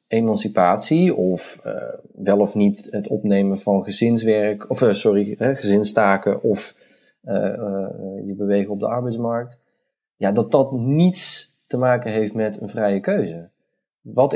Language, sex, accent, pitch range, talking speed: Dutch, male, Dutch, 100-135 Hz, 140 wpm